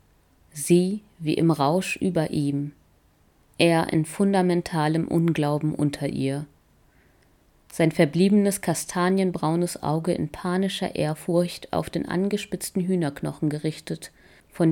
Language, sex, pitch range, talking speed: German, female, 140-180 Hz, 100 wpm